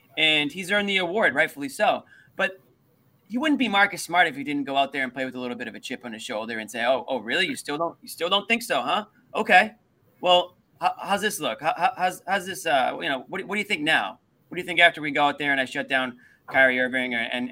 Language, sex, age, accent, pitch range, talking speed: English, male, 30-49, American, 125-185 Hz, 280 wpm